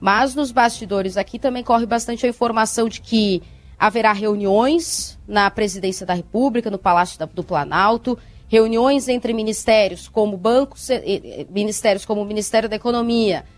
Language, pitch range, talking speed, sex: Portuguese, 205-260 Hz, 140 wpm, female